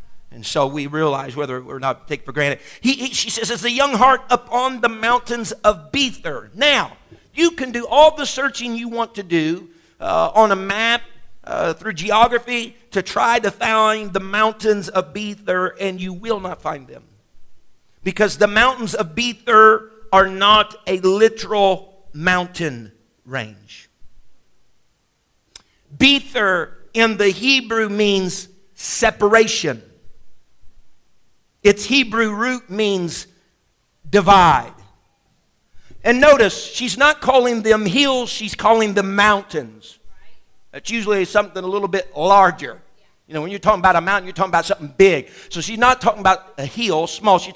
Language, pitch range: English, 185-235 Hz